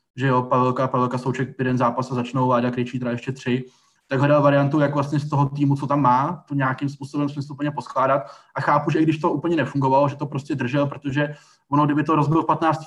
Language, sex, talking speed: Czech, male, 240 wpm